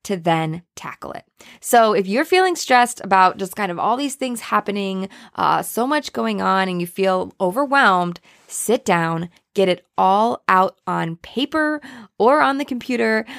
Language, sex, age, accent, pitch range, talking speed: English, female, 20-39, American, 185-245 Hz, 170 wpm